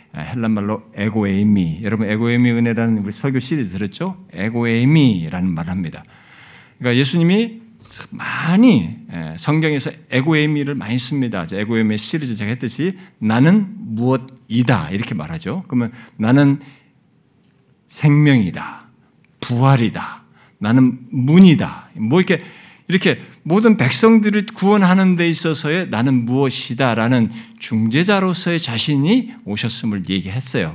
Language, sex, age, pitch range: Korean, male, 50-69, 110-175 Hz